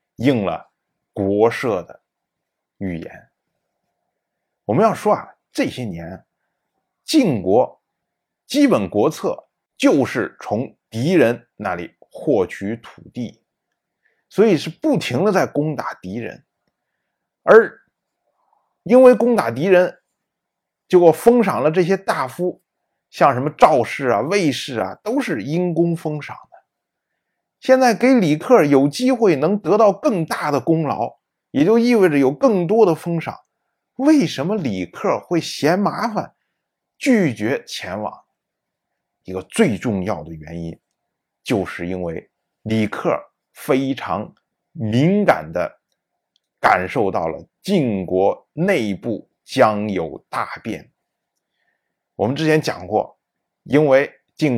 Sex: male